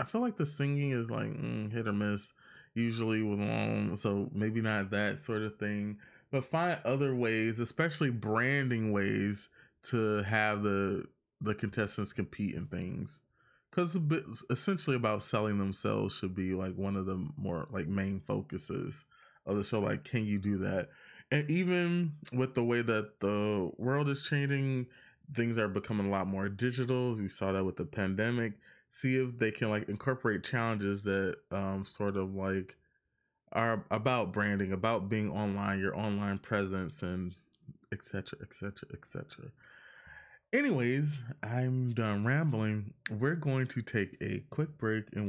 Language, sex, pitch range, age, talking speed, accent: English, male, 100-130 Hz, 20-39, 160 wpm, American